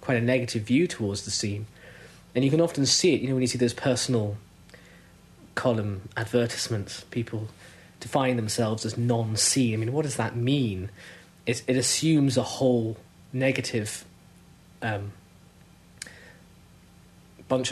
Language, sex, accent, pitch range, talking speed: English, male, British, 105-125 Hz, 140 wpm